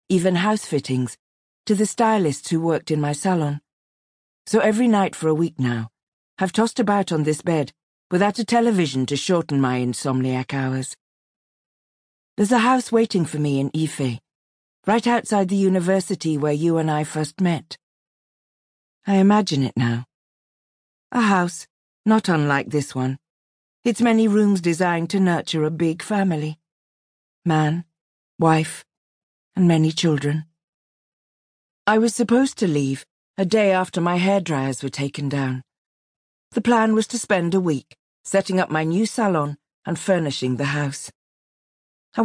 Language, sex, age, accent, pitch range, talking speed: English, female, 50-69, British, 145-195 Hz, 150 wpm